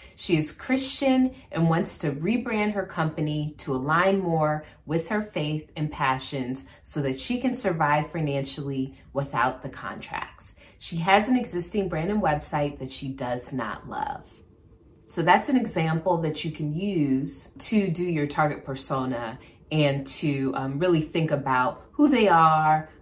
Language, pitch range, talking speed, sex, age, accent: English, 140-180 Hz, 155 wpm, female, 30-49, American